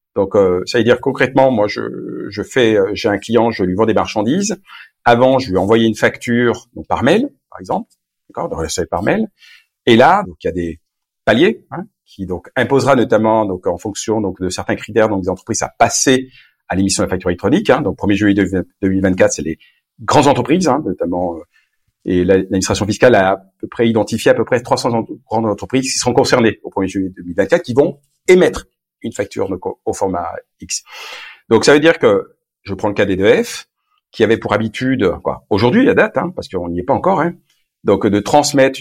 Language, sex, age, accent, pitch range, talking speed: French, male, 50-69, French, 95-130 Hz, 215 wpm